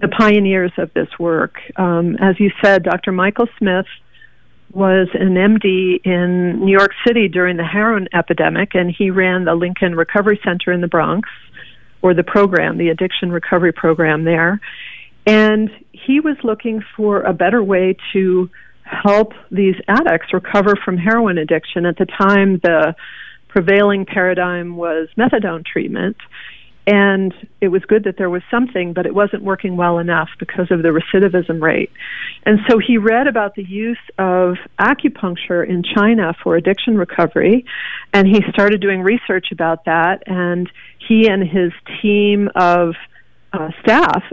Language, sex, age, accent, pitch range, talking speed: English, female, 50-69, American, 180-210 Hz, 155 wpm